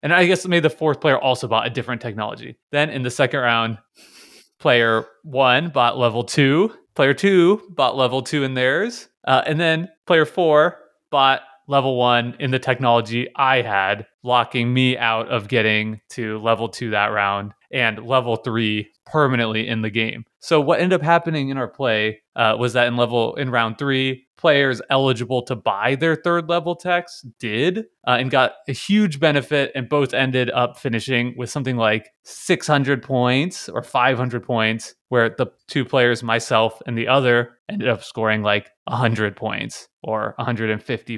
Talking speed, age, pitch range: 175 wpm, 20-39, 115-150 Hz